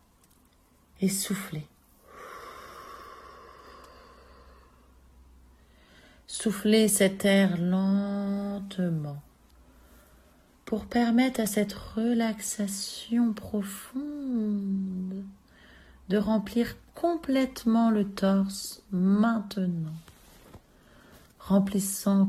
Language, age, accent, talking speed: French, 40-59, French, 50 wpm